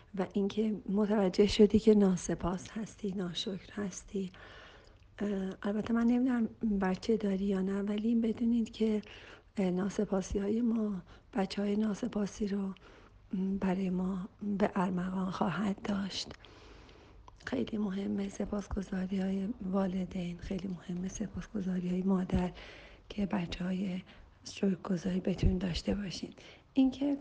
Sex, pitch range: female, 190-215 Hz